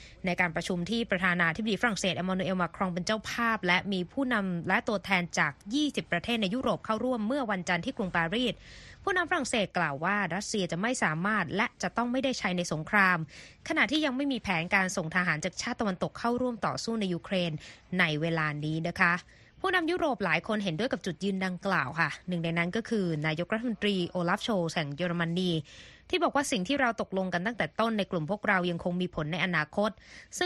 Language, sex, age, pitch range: Thai, female, 20-39, 175-230 Hz